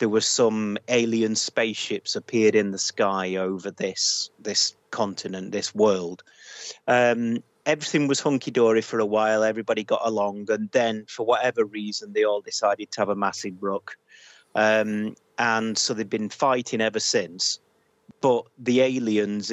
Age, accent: 30-49, British